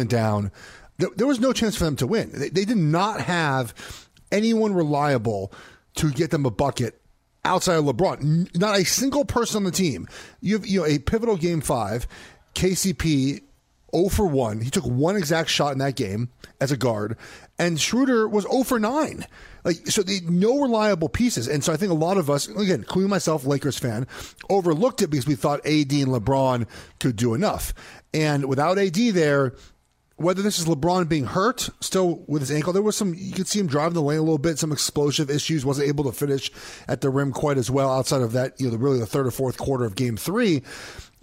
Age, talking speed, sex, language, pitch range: 30-49, 210 wpm, male, English, 140-205 Hz